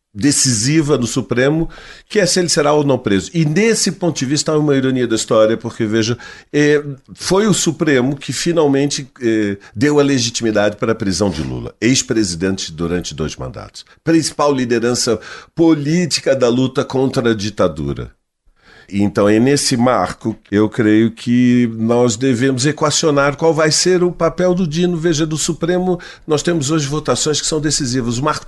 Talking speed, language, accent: 160 wpm, Portuguese, Brazilian